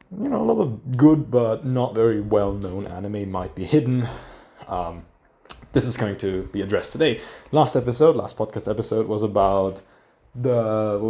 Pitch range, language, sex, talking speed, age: 100-130 Hz, English, male, 170 wpm, 20-39